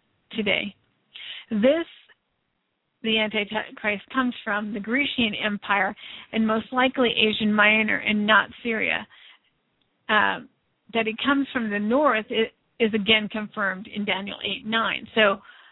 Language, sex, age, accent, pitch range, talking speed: English, female, 50-69, American, 215-275 Hz, 125 wpm